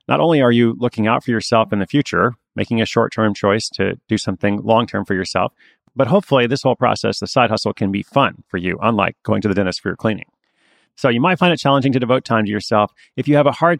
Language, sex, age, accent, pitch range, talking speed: English, male, 30-49, American, 105-130 Hz, 250 wpm